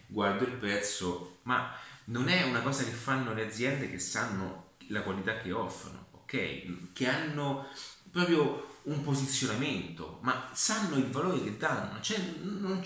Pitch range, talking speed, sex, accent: 95-135 Hz, 150 wpm, male, native